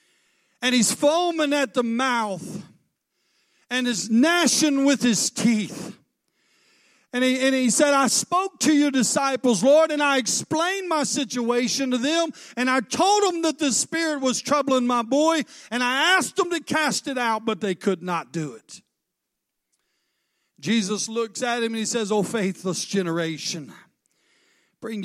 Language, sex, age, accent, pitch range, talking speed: English, male, 50-69, American, 210-275 Hz, 155 wpm